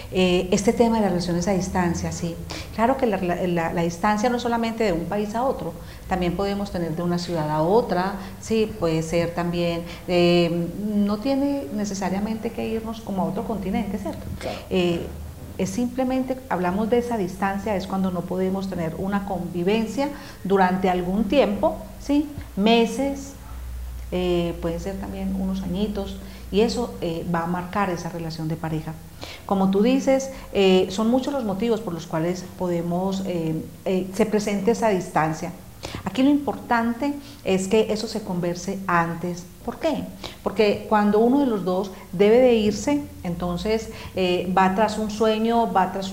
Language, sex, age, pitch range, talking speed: Spanish, female, 40-59, 175-225 Hz, 165 wpm